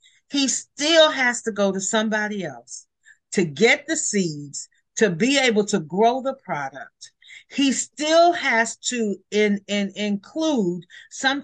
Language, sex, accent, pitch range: English, female, American, 190-240 Hz